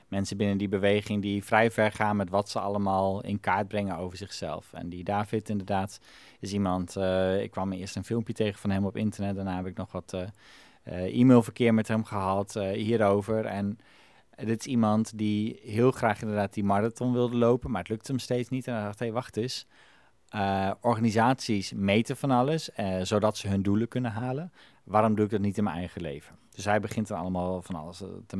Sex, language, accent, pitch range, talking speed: male, Dutch, Dutch, 95-110 Hz, 215 wpm